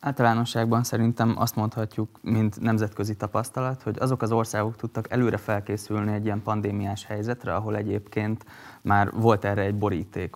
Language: Hungarian